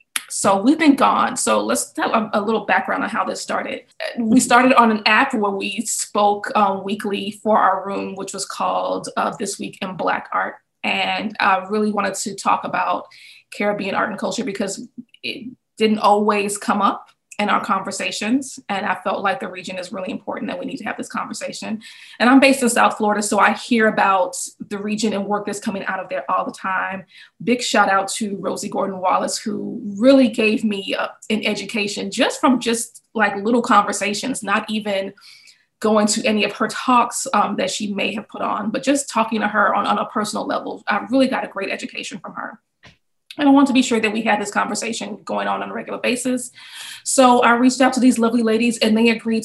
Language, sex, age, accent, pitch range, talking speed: English, female, 20-39, American, 205-245 Hz, 210 wpm